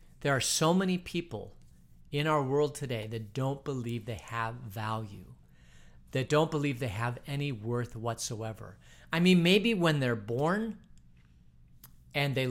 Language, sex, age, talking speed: English, male, 40-59, 150 wpm